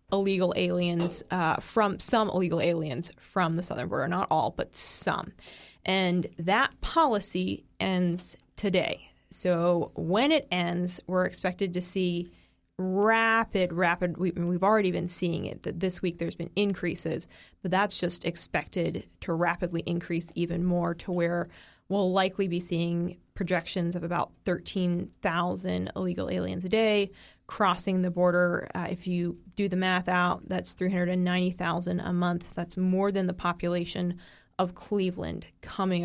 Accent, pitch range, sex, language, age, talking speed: American, 175-195 Hz, female, English, 20-39, 145 wpm